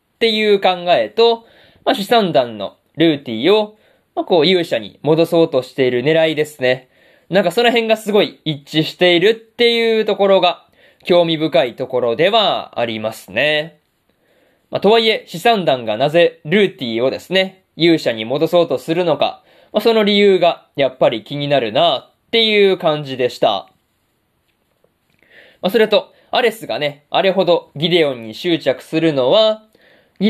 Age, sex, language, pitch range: 20-39, male, Japanese, 145-205 Hz